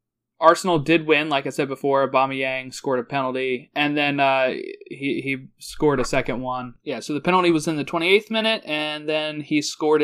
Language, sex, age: English, male, 20-39